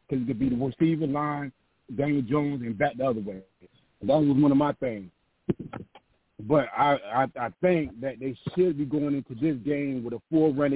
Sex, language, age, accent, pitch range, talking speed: male, English, 30-49, American, 135-160 Hz, 210 wpm